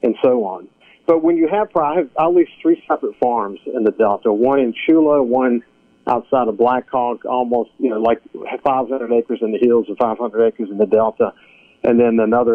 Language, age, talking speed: English, 50-69, 200 wpm